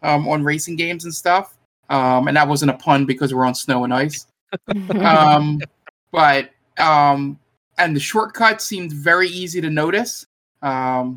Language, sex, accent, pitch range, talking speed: English, male, American, 135-170 Hz, 160 wpm